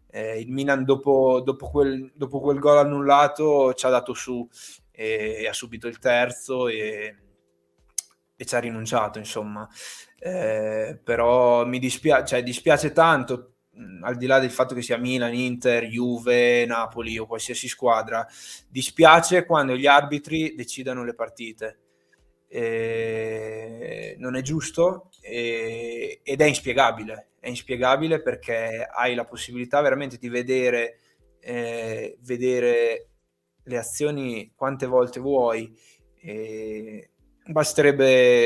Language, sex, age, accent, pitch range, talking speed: Italian, male, 20-39, native, 115-135 Hz, 120 wpm